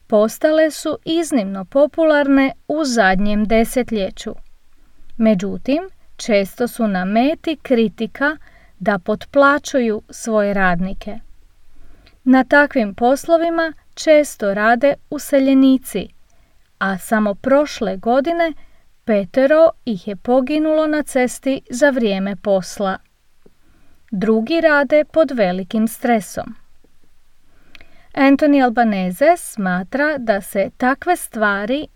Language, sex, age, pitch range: English, female, 40-59, 205-280 Hz